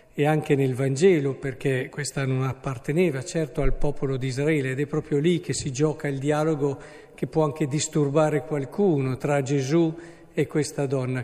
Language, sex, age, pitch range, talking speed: Italian, male, 50-69, 140-170 Hz, 170 wpm